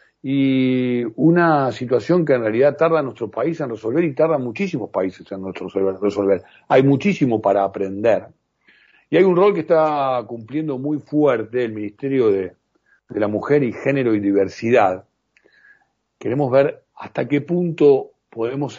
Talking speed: 145 wpm